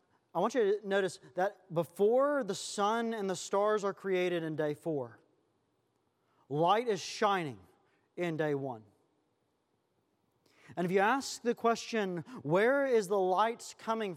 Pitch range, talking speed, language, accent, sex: 160-205 Hz, 145 wpm, English, American, male